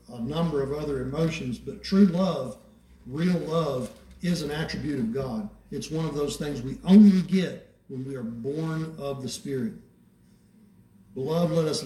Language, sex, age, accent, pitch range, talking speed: English, male, 60-79, American, 125-195 Hz, 165 wpm